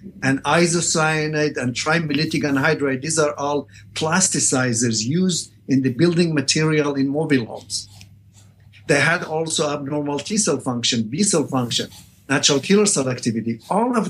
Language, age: English, 50-69